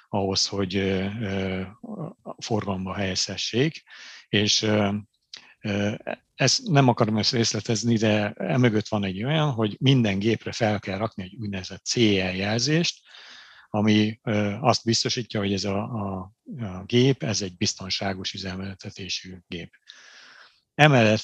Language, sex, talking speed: Hungarian, male, 105 wpm